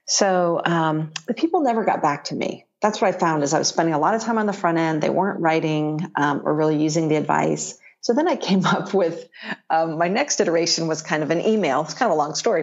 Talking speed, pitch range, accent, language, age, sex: 260 wpm, 155-190 Hz, American, English, 40-59, female